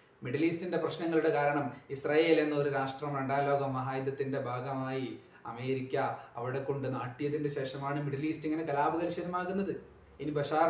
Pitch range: 145-190 Hz